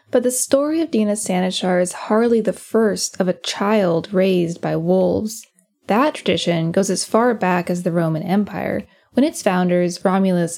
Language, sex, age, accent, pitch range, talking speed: English, female, 10-29, American, 180-245 Hz, 170 wpm